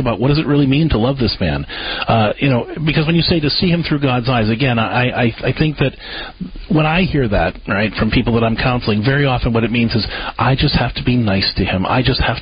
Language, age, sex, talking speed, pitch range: English, 40-59, male, 270 wpm, 115-145 Hz